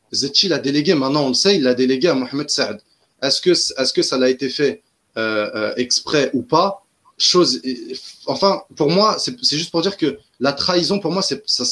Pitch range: 140-195 Hz